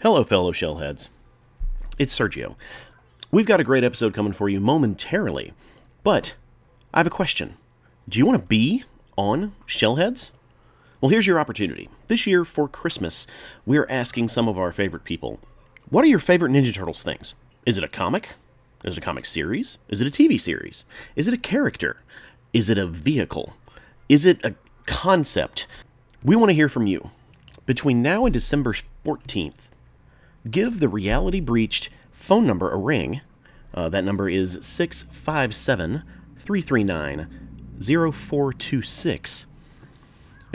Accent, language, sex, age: American, English, male, 30-49